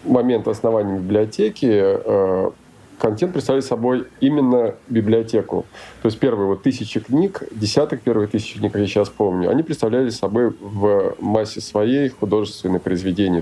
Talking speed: 135 wpm